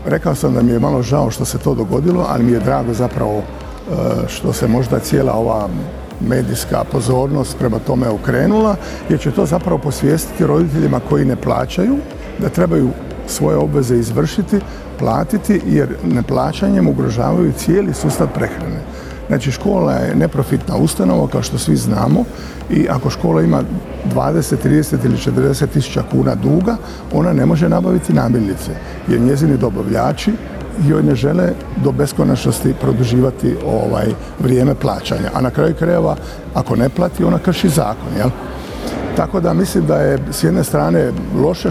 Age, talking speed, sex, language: 50-69, 150 wpm, male, Croatian